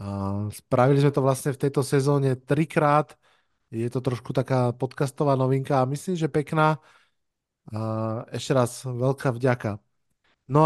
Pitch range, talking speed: 125-145 Hz, 140 wpm